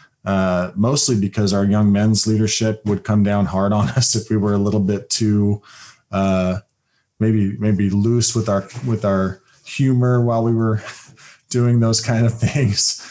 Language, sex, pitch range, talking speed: English, male, 95-110 Hz, 170 wpm